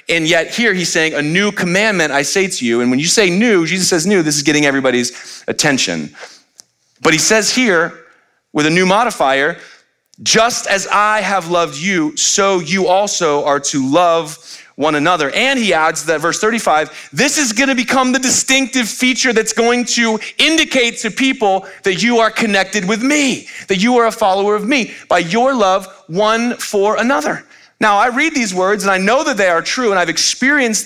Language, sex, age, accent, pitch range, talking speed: English, male, 30-49, American, 185-250 Hz, 195 wpm